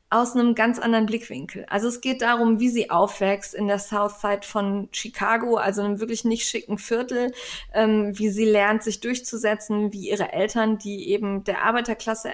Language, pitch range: German, 210-245 Hz